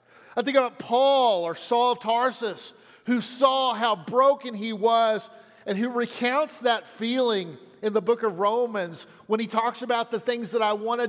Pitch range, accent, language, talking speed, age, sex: 170-235 Hz, American, English, 185 wpm, 50-69, male